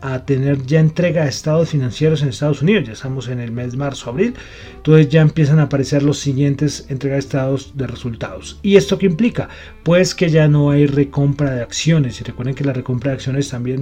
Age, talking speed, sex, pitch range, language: 30-49, 215 wpm, male, 130-160 Hz, Spanish